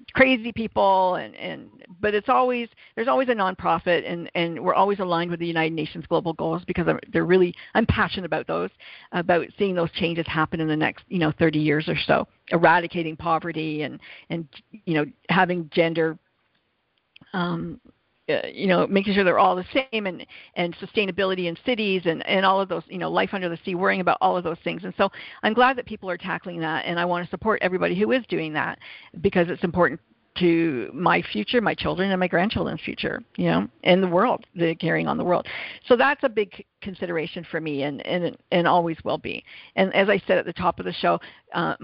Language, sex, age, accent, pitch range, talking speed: English, female, 50-69, American, 165-195 Hz, 215 wpm